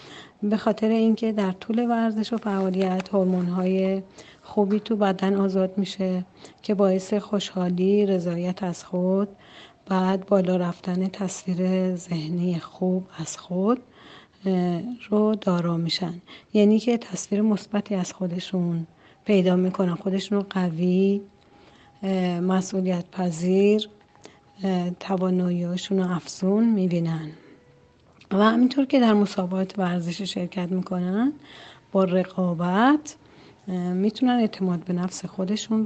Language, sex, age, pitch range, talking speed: Persian, female, 40-59, 180-210 Hz, 105 wpm